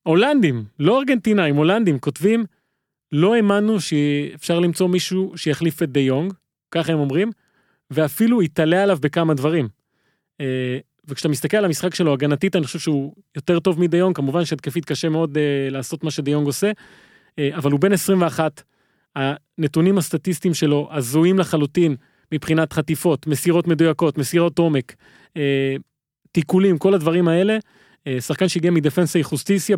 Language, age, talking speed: Hebrew, 30-49, 135 wpm